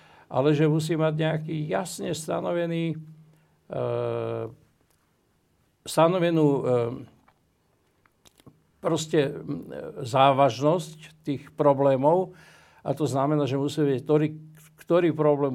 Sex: male